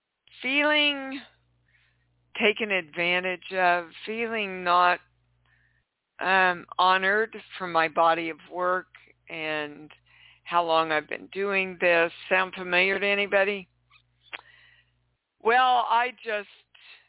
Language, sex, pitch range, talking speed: English, female, 160-205 Hz, 95 wpm